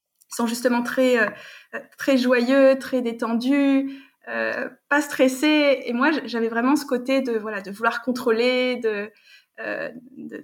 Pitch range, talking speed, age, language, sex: 230-265 Hz, 130 wpm, 20-39, French, female